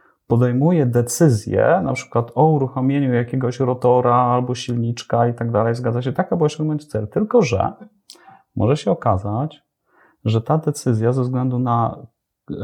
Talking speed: 140 wpm